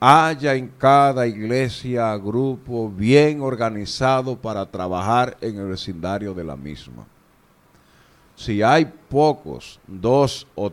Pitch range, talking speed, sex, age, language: 100-145 Hz, 110 wpm, male, 50-69, English